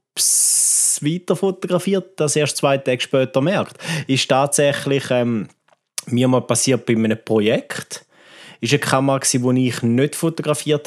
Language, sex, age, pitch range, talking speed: German, male, 30-49, 120-155 Hz, 145 wpm